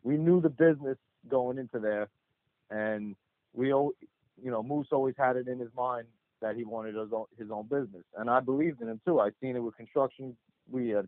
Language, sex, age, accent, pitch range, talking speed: English, male, 40-59, American, 110-130 Hz, 215 wpm